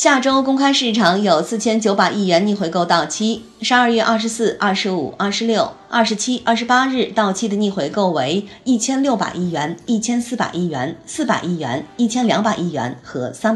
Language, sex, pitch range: Chinese, female, 185-235 Hz